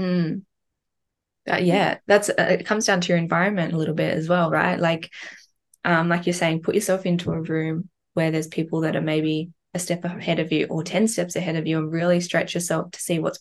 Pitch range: 160-180 Hz